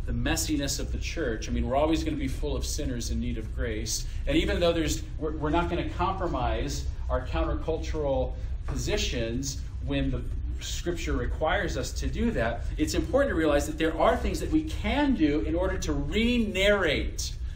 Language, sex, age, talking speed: English, male, 40-59, 190 wpm